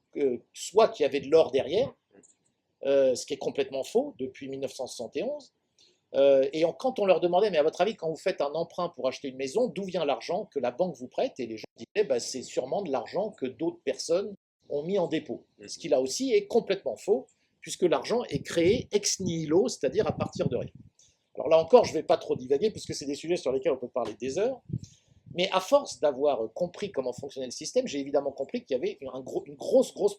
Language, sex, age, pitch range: French, male, 50-69, 145-235 Hz